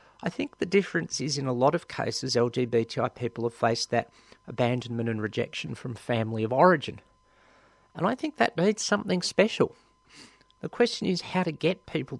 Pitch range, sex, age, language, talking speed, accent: 115-150 Hz, male, 40-59, English, 175 wpm, Australian